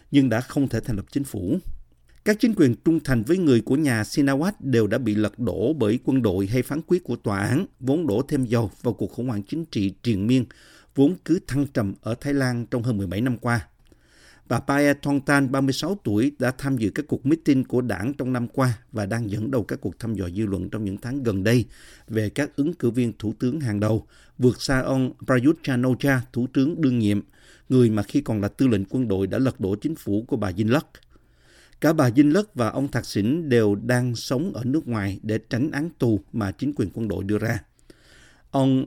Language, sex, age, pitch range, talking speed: Vietnamese, male, 50-69, 105-135 Hz, 230 wpm